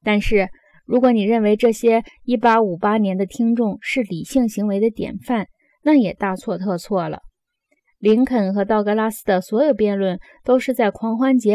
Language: Chinese